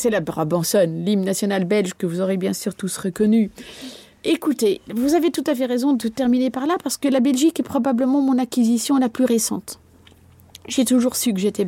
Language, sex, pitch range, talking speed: French, female, 190-255 Hz, 205 wpm